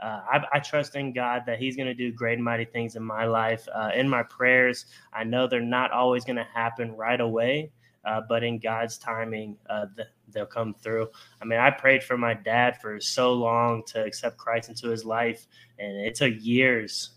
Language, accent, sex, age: English, American, male, 10-29